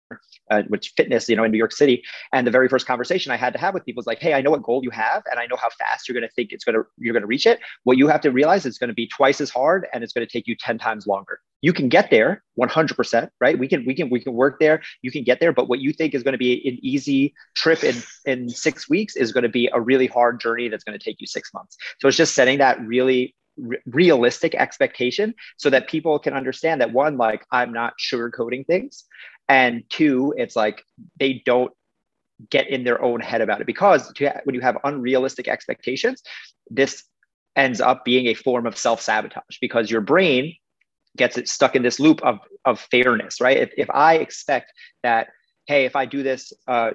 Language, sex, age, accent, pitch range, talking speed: English, male, 30-49, American, 120-140 Hz, 240 wpm